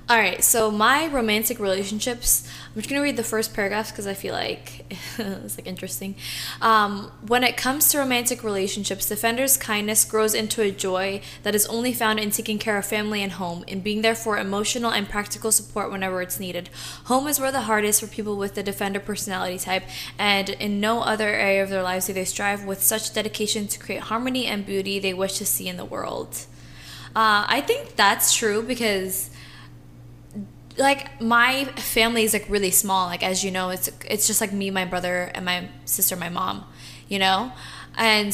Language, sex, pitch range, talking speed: English, female, 190-225 Hz, 195 wpm